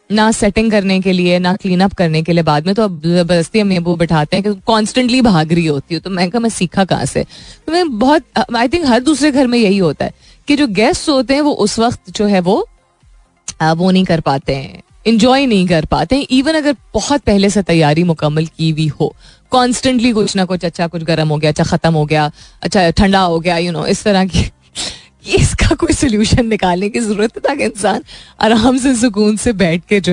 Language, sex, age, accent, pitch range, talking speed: Hindi, female, 20-39, native, 175-250 Hz, 225 wpm